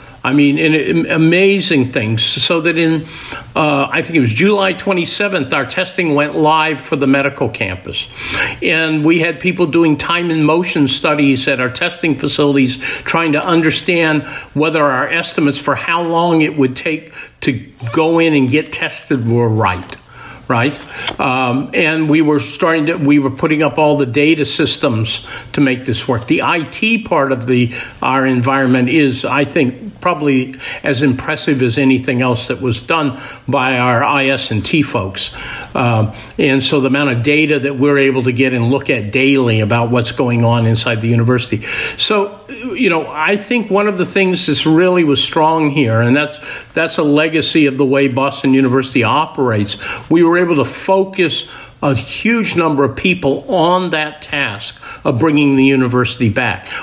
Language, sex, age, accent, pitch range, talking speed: English, male, 50-69, American, 130-160 Hz, 170 wpm